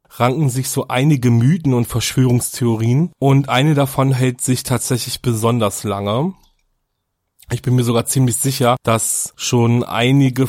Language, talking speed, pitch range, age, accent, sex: German, 135 wpm, 120-140 Hz, 30-49, German, male